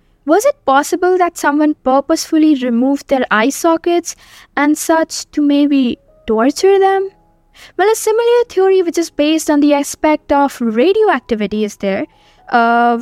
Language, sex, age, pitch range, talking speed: English, female, 10-29, 250-345 Hz, 145 wpm